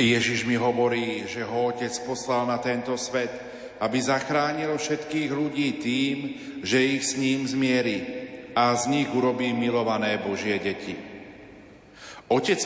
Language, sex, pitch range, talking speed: Slovak, male, 120-145 Hz, 135 wpm